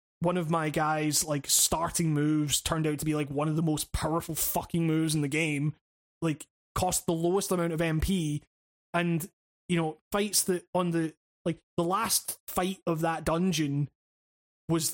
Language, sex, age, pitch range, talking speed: English, male, 20-39, 155-185 Hz, 175 wpm